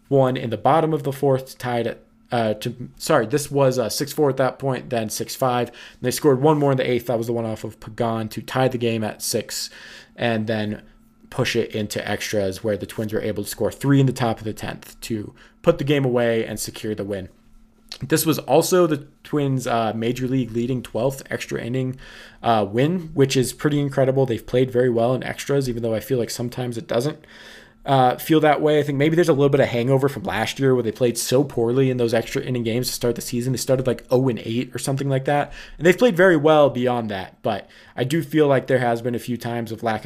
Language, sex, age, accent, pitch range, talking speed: English, male, 20-39, American, 115-140 Hz, 240 wpm